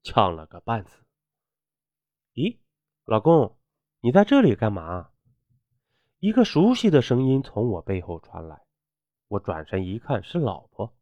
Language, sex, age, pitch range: Chinese, male, 30-49, 100-155 Hz